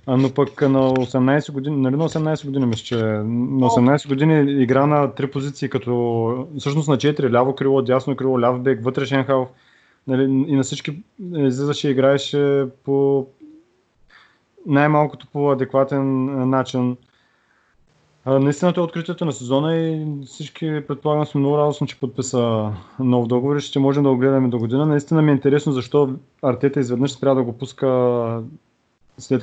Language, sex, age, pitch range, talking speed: Bulgarian, male, 20-39, 125-140 Hz, 155 wpm